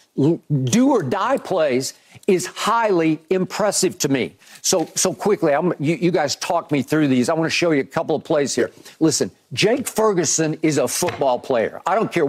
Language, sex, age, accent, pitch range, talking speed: English, male, 50-69, American, 160-215 Hz, 185 wpm